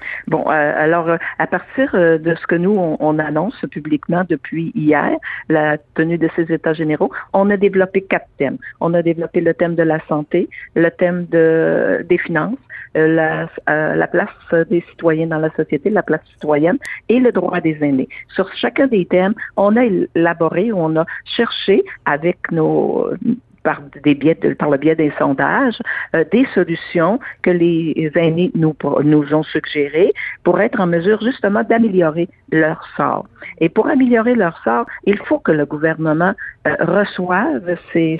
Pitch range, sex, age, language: 155-190 Hz, female, 50-69, French